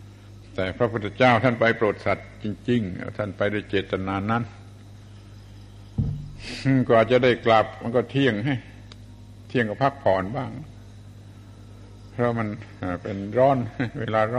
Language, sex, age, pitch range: Thai, male, 70-89, 100-110 Hz